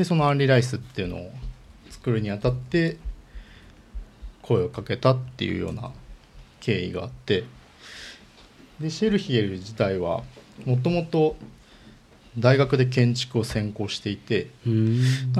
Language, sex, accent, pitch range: Japanese, male, native, 100-130 Hz